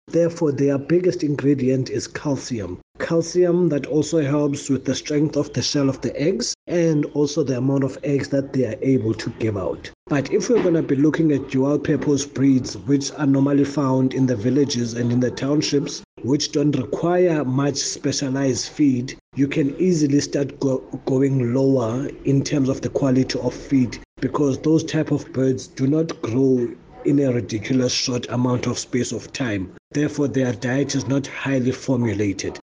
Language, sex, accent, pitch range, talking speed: English, male, South African, 130-150 Hz, 180 wpm